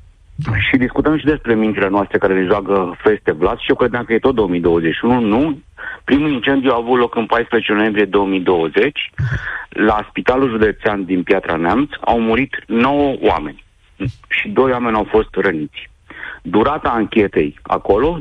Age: 50-69